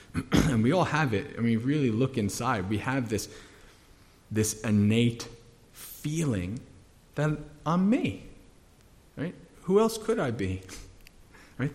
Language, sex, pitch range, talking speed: English, male, 100-125 Hz, 140 wpm